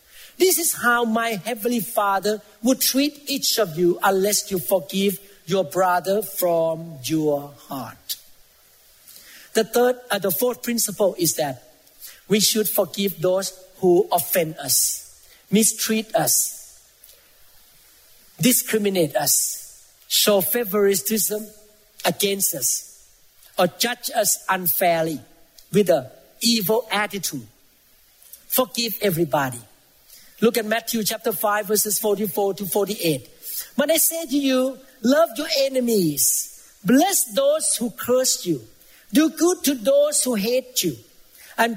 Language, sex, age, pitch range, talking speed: English, male, 50-69, 190-255 Hz, 120 wpm